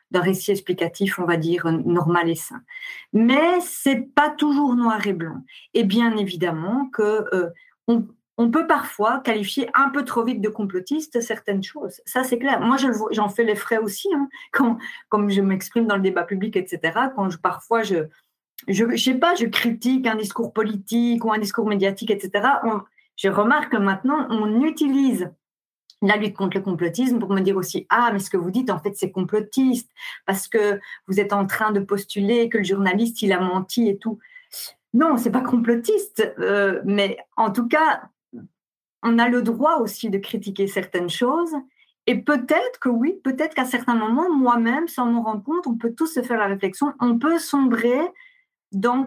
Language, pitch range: French, 200-260 Hz